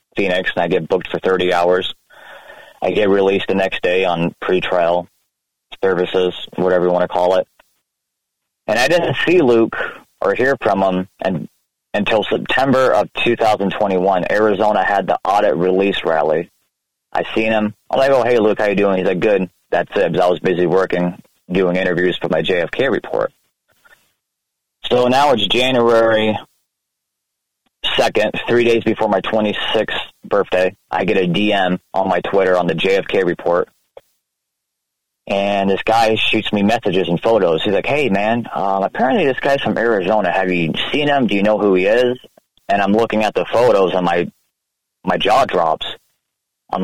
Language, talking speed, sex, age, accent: English, 170 wpm, male, 30-49, American